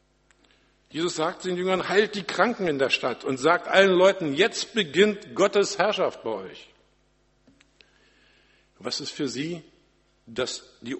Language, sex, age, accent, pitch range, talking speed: German, male, 50-69, German, 145-195 Hz, 135 wpm